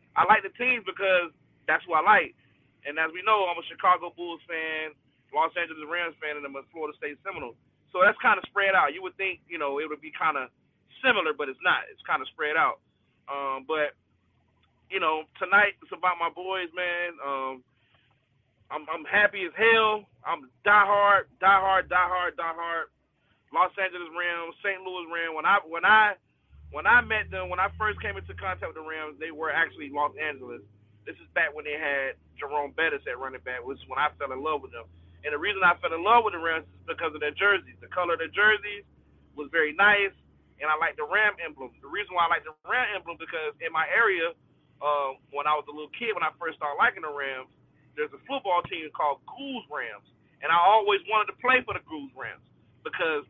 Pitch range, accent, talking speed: 150-200 Hz, American, 220 wpm